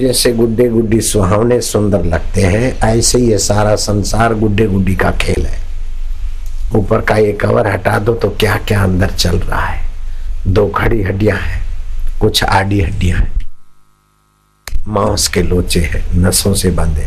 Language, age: Hindi, 60-79